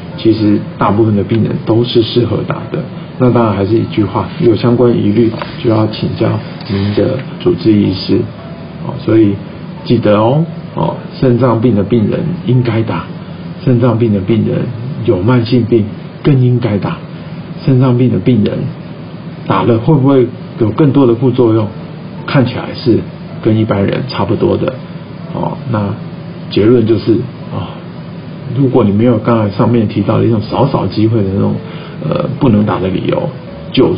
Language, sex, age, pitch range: Chinese, male, 50-69, 110-155 Hz